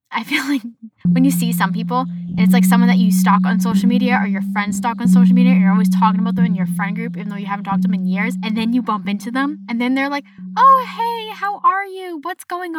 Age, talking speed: 10-29, 280 wpm